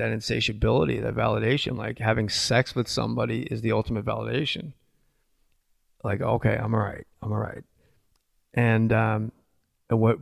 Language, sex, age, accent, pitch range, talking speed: English, male, 30-49, American, 110-130 Hz, 145 wpm